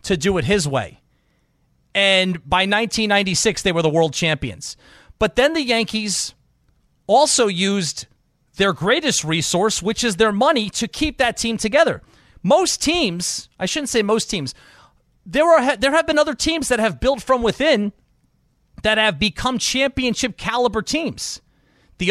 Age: 30-49